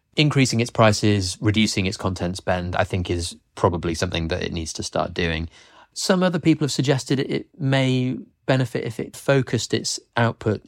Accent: British